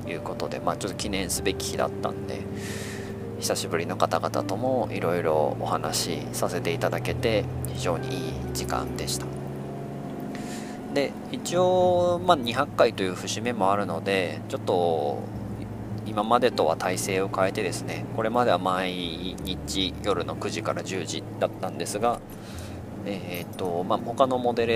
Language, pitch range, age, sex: Japanese, 75-110 Hz, 20-39, male